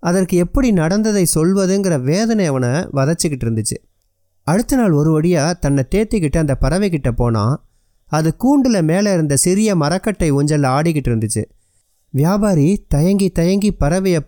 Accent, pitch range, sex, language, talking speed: native, 135-195 Hz, male, Tamil, 125 wpm